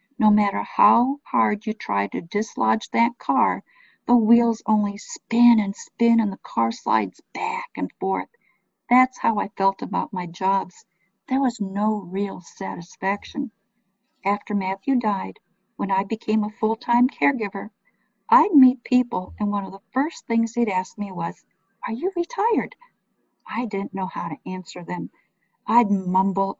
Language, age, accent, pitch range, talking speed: English, 50-69, American, 195-260 Hz, 160 wpm